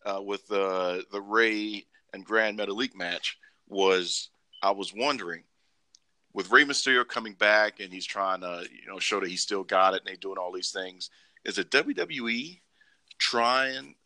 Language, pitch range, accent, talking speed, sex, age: English, 95-115 Hz, American, 170 wpm, male, 40-59